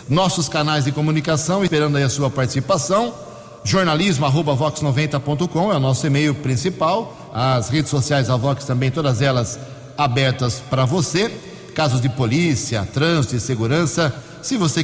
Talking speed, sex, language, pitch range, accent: 140 wpm, male, Portuguese, 135-165 Hz, Brazilian